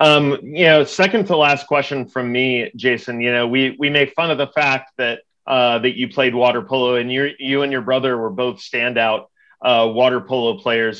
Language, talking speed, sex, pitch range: English, 215 wpm, male, 125-150 Hz